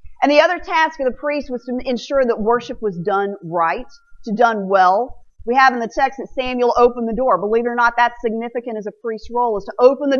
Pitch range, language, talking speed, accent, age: 215-305 Hz, English, 245 wpm, American, 40-59